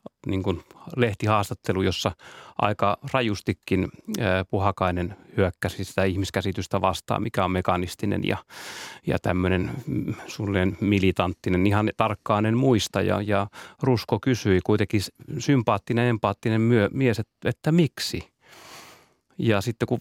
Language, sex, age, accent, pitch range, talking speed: Finnish, male, 30-49, native, 95-120 Hz, 105 wpm